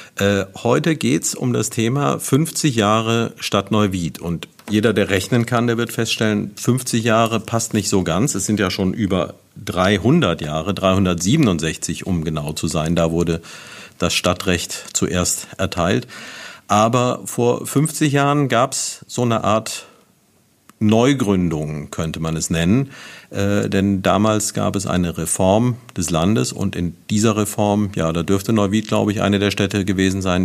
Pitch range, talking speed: 95-115 Hz, 160 wpm